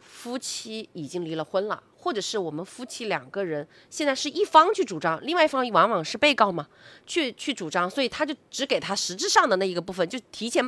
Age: 30-49